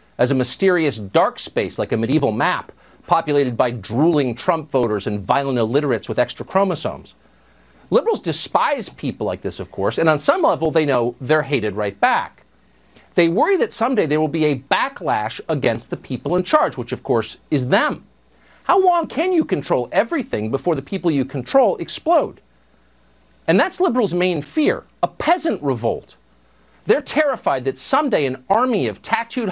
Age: 50-69